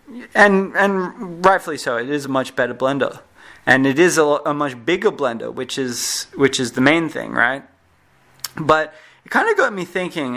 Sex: male